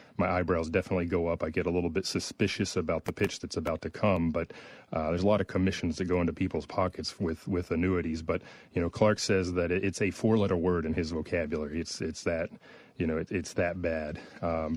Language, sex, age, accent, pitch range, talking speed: English, male, 30-49, American, 85-105 Hz, 230 wpm